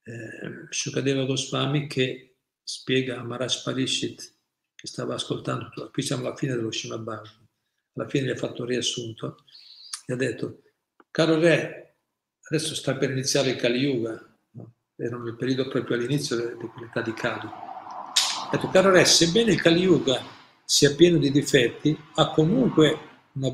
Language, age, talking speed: Italian, 50-69, 150 wpm